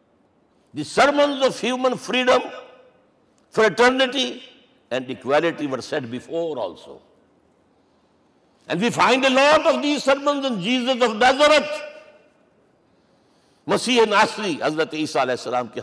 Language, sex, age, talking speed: Urdu, male, 60-79, 120 wpm